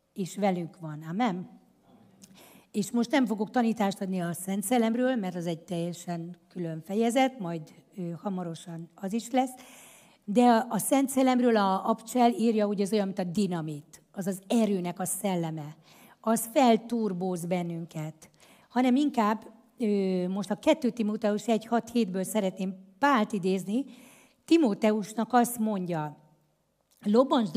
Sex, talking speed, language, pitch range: female, 135 wpm, Hungarian, 180-235 Hz